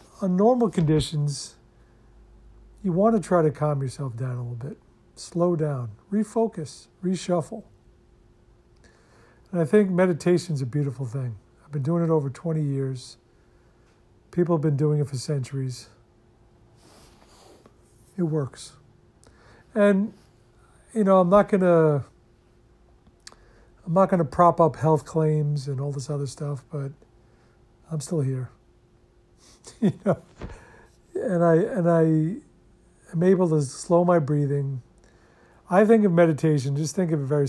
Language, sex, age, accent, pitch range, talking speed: English, male, 50-69, American, 125-175 Hz, 135 wpm